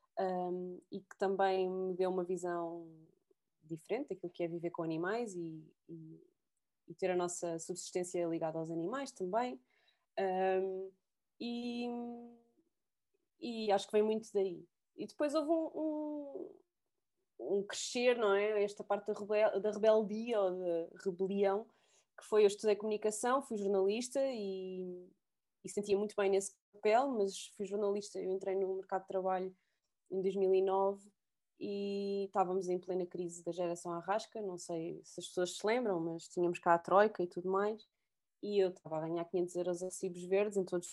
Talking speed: 165 wpm